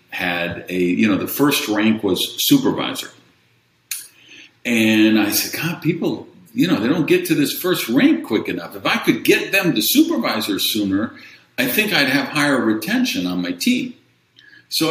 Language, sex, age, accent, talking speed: English, male, 50-69, American, 175 wpm